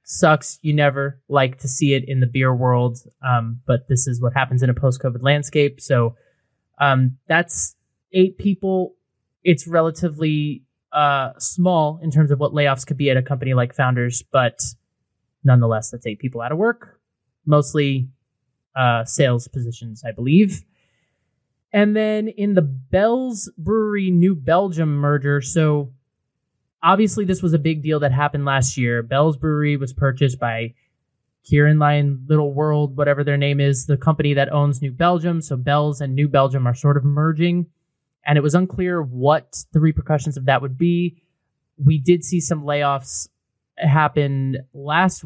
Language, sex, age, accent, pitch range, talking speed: English, male, 20-39, American, 130-160 Hz, 160 wpm